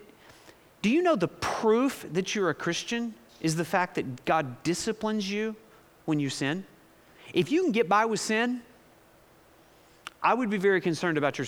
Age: 40-59